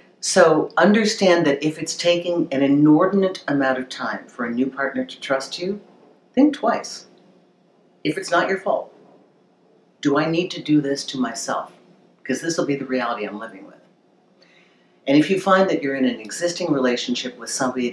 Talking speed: 180 wpm